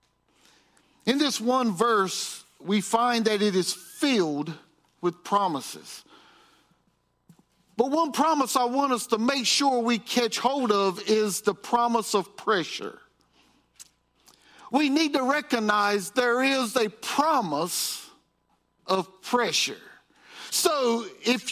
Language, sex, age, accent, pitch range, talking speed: English, male, 50-69, American, 205-275 Hz, 115 wpm